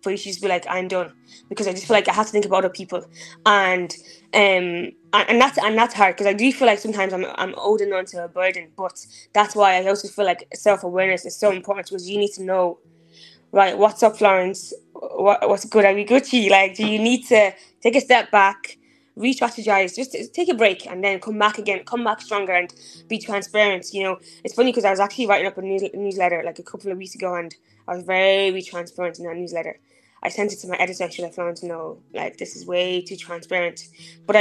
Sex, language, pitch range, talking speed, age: female, English, 180-215 Hz, 240 wpm, 10-29